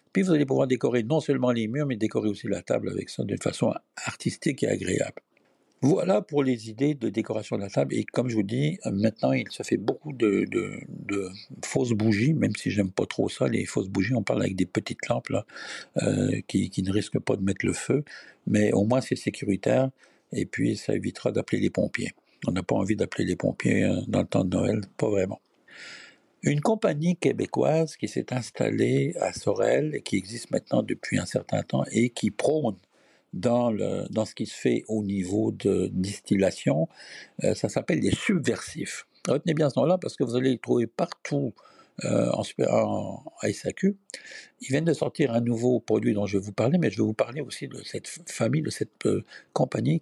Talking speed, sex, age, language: 205 wpm, male, 60-79, French